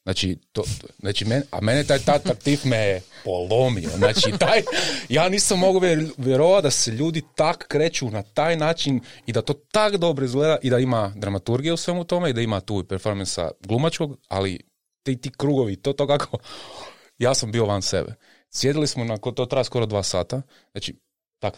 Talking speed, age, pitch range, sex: 190 wpm, 30-49, 105-140 Hz, male